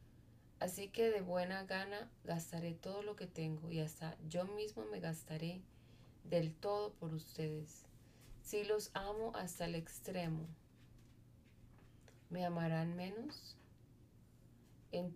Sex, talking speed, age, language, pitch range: female, 120 wpm, 20-39, Spanish, 160-190 Hz